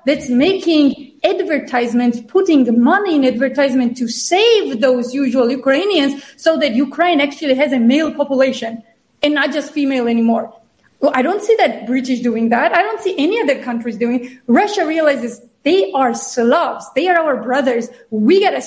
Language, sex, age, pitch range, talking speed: English, female, 30-49, 255-320 Hz, 165 wpm